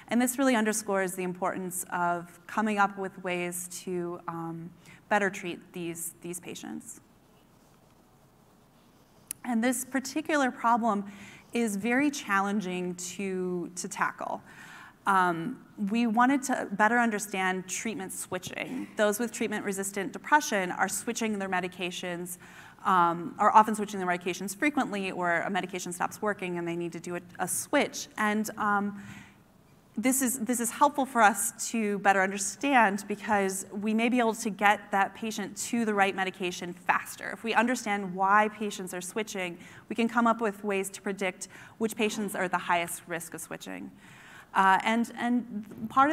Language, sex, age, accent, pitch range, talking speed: English, female, 20-39, American, 185-230 Hz, 150 wpm